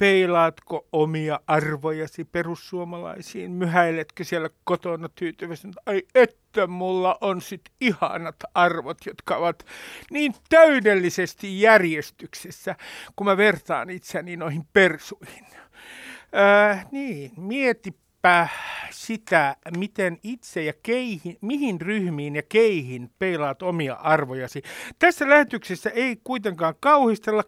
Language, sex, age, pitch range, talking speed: Finnish, male, 60-79, 170-230 Hz, 105 wpm